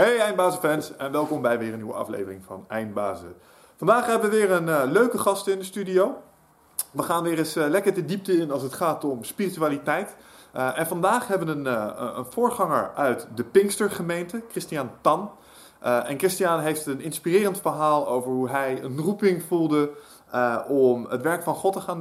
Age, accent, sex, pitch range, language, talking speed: 30-49, Dutch, male, 125-180 Hz, Dutch, 195 wpm